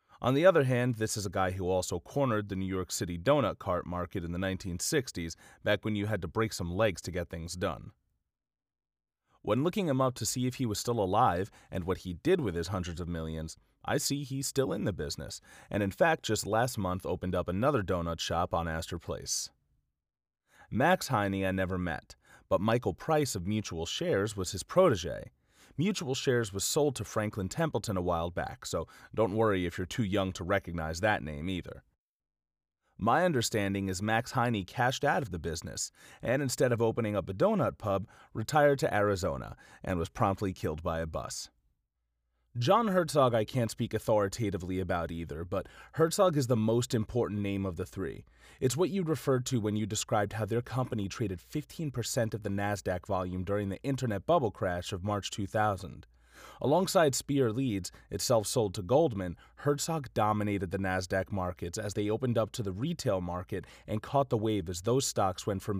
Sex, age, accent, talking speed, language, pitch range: male, 30-49, American, 190 wpm, English, 90-120 Hz